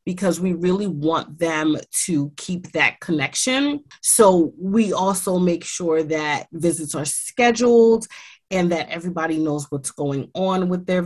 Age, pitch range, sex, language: 30-49, 150-180 Hz, female, English